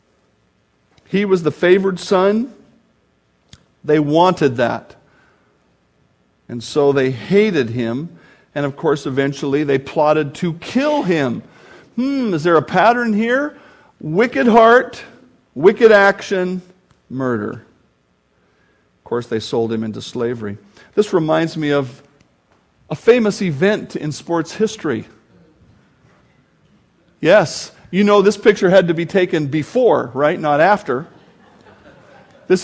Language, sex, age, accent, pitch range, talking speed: English, male, 50-69, American, 145-205 Hz, 120 wpm